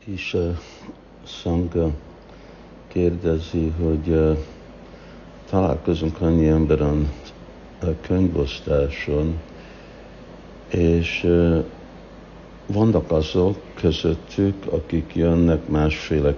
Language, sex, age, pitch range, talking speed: Hungarian, male, 60-79, 75-85 Hz, 60 wpm